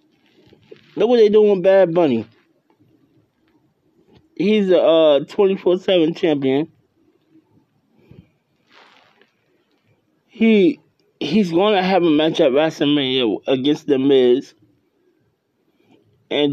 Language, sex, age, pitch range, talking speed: English, male, 20-39, 155-215 Hz, 95 wpm